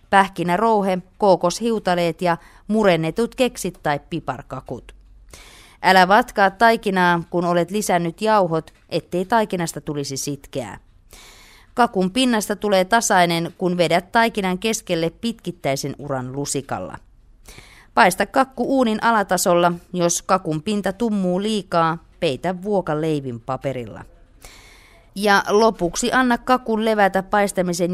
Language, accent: Finnish, native